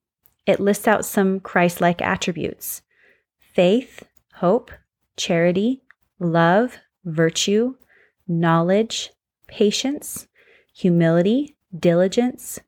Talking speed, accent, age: 75 wpm, American, 30-49